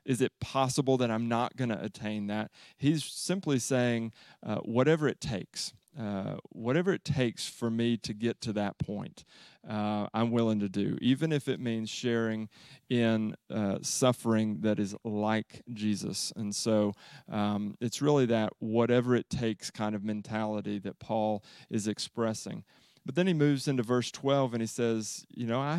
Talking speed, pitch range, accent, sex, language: 170 wpm, 105-125 Hz, American, male, English